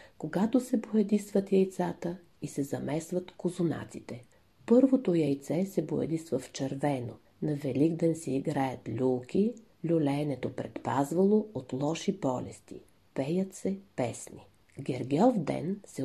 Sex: female